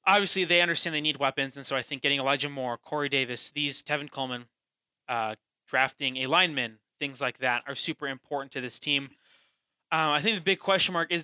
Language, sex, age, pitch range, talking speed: English, male, 20-39, 130-155 Hz, 210 wpm